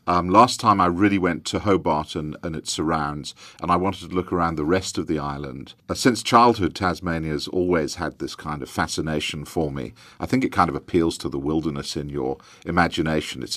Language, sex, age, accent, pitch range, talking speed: English, male, 50-69, British, 75-90 Hz, 210 wpm